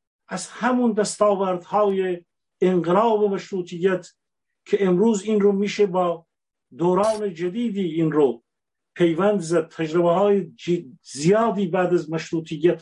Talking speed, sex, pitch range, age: 110 wpm, male, 170-205 Hz, 50-69